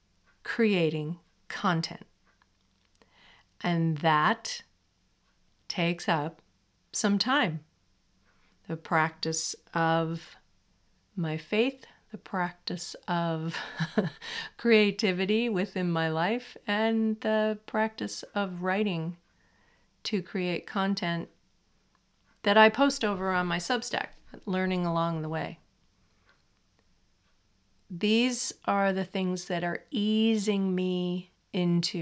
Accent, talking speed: American, 90 wpm